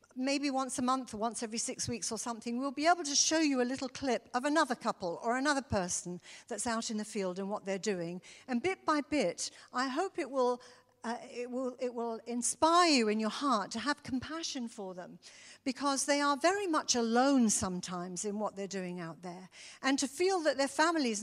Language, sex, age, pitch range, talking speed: English, female, 50-69, 215-280 Hz, 220 wpm